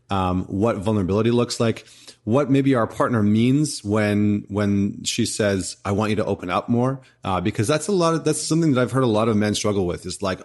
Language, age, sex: English, 30-49, male